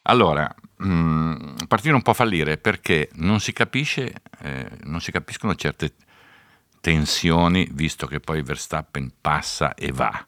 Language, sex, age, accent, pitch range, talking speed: Italian, male, 50-69, native, 75-90 Hz, 140 wpm